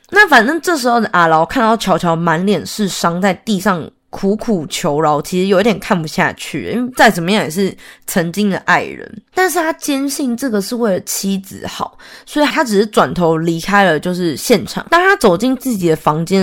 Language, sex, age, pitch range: Chinese, female, 20-39, 180-240 Hz